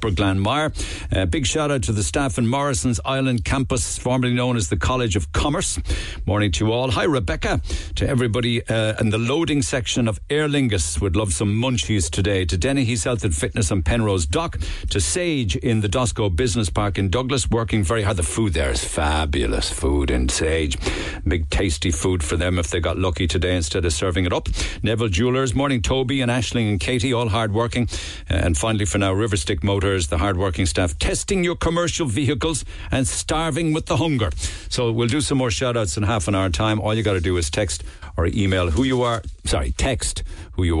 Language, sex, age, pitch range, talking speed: English, male, 60-79, 90-120 Hz, 205 wpm